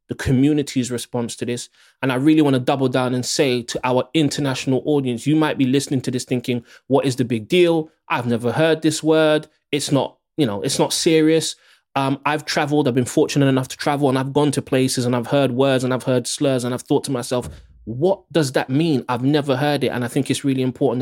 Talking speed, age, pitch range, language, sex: 235 wpm, 20-39, 120-145 Hz, English, male